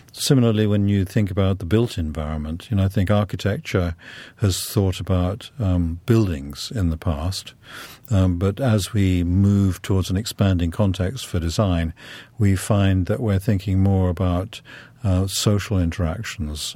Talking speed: 150 wpm